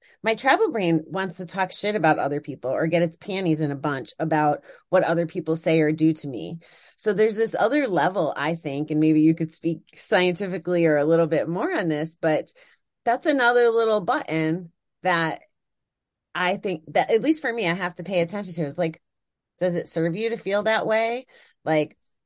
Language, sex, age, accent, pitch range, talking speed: English, female, 30-49, American, 160-190 Hz, 205 wpm